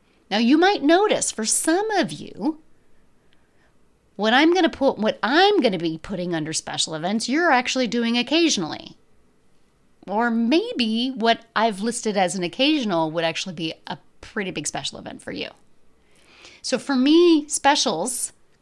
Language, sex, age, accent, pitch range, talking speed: English, female, 30-49, American, 195-265 Hz, 155 wpm